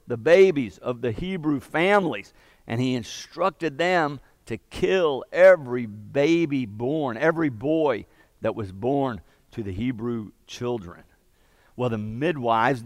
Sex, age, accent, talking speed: male, 50-69, American, 125 wpm